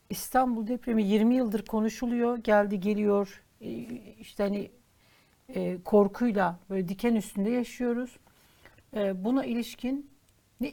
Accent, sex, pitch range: native, female, 200-245 Hz